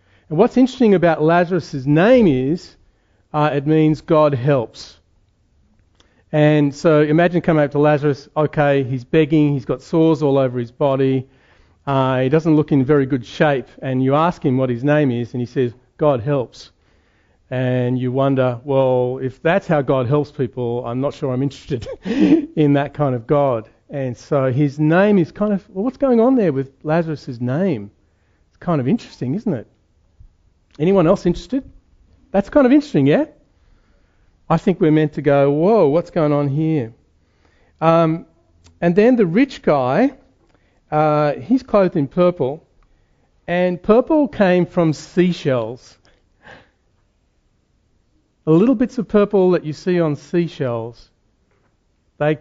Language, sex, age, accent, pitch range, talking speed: English, male, 40-59, Australian, 120-165 Hz, 155 wpm